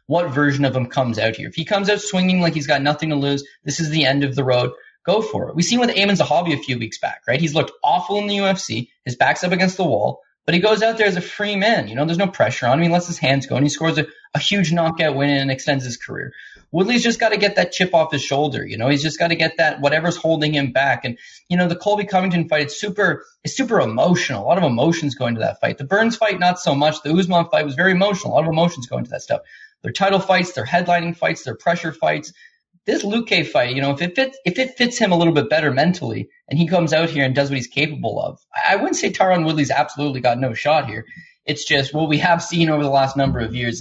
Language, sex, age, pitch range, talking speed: English, male, 20-39, 140-185 Hz, 280 wpm